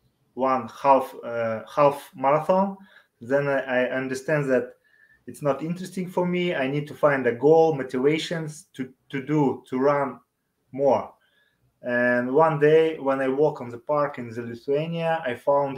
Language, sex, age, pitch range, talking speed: Portuguese, male, 20-39, 125-150 Hz, 160 wpm